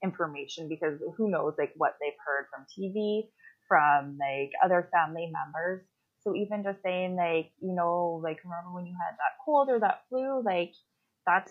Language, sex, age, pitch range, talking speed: English, female, 20-39, 175-260 Hz, 175 wpm